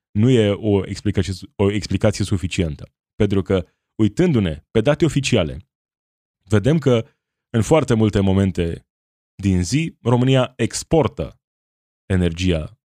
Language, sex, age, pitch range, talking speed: Romanian, male, 20-39, 95-120 Hz, 105 wpm